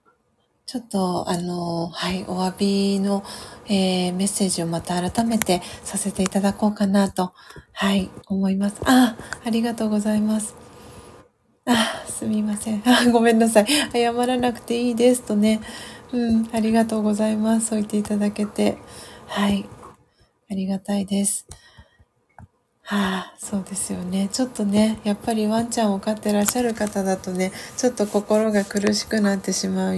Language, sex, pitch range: Japanese, female, 185-220 Hz